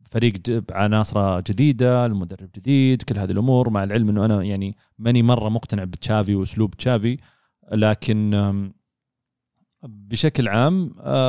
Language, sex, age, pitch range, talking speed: Arabic, male, 30-49, 100-125 Hz, 115 wpm